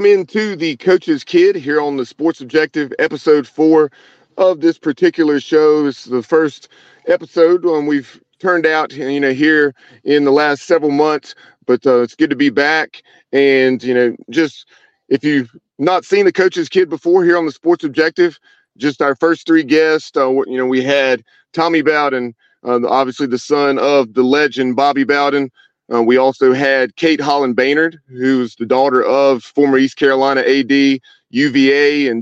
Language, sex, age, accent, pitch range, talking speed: English, male, 40-59, American, 130-160 Hz, 175 wpm